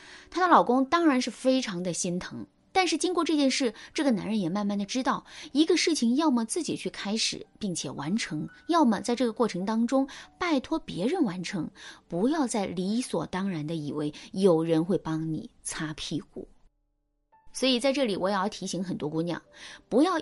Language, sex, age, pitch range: Chinese, female, 20-39, 170-260 Hz